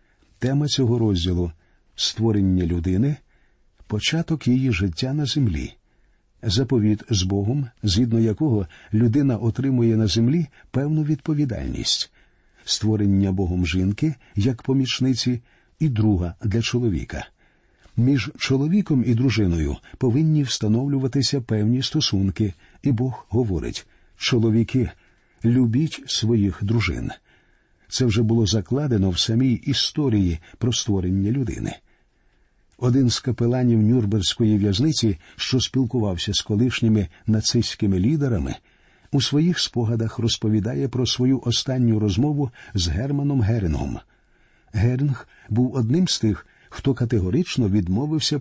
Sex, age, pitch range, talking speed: male, 50-69, 105-130 Hz, 105 wpm